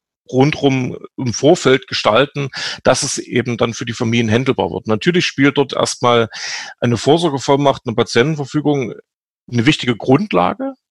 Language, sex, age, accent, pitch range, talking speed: German, male, 40-59, German, 120-150 Hz, 130 wpm